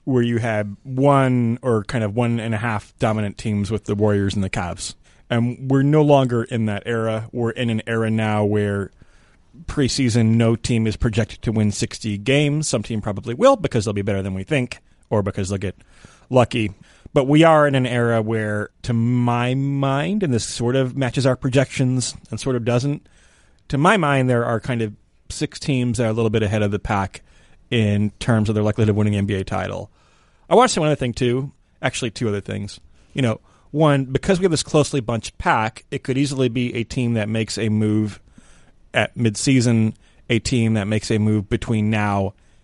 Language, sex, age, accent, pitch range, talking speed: English, male, 30-49, American, 105-130 Hz, 205 wpm